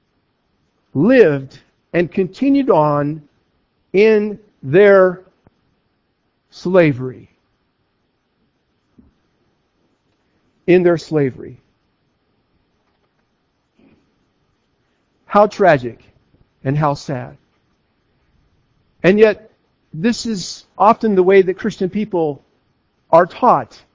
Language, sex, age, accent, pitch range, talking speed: English, male, 50-69, American, 150-215 Hz, 70 wpm